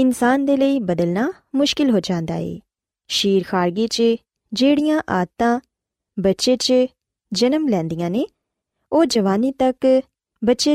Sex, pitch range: female, 185-270 Hz